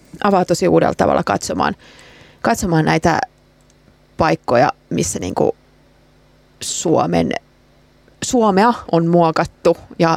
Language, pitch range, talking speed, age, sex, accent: Finnish, 165-200 Hz, 90 wpm, 30-49, female, native